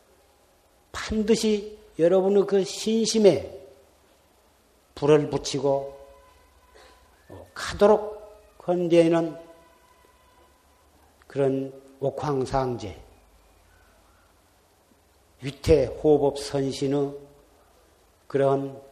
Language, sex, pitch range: Korean, male, 135-175 Hz